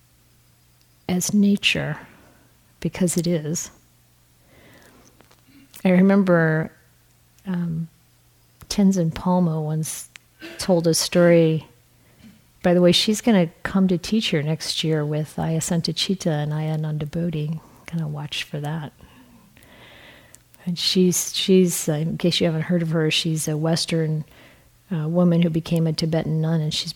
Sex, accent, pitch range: female, American, 155-180 Hz